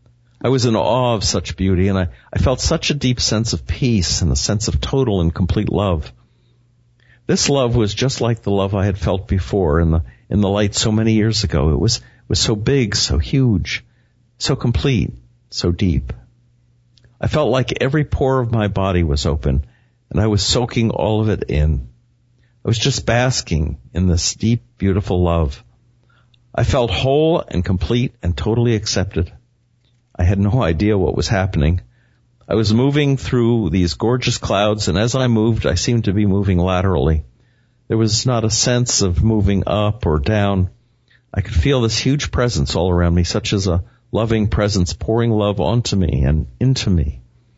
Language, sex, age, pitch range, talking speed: English, male, 50-69, 90-120 Hz, 185 wpm